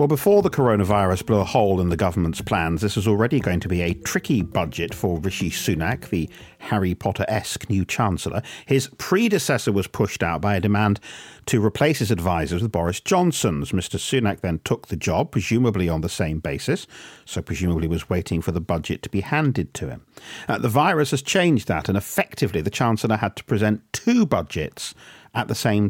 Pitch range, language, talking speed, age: 90-125 Hz, English, 190 wpm, 50-69